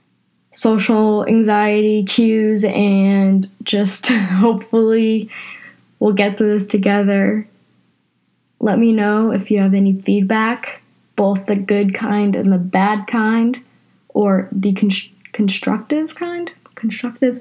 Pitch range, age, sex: 200-235 Hz, 10-29, female